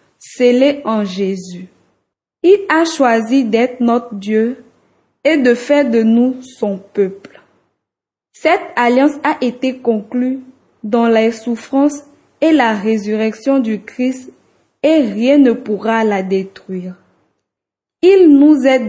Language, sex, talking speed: French, female, 120 wpm